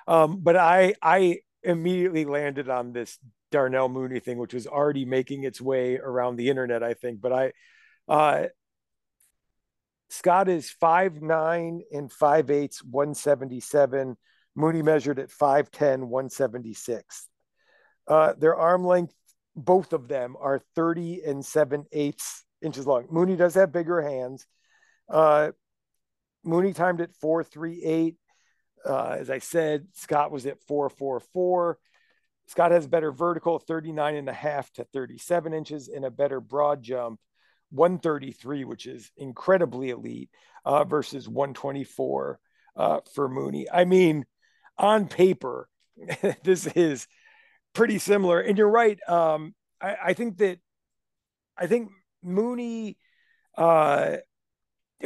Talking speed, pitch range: 130 wpm, 140-180 Hz